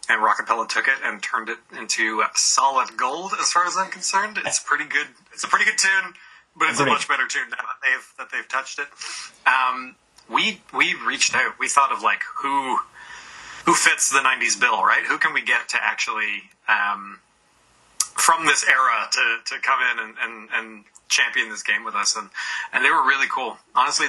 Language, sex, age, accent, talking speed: English, male, 30-49, American, 205 wpm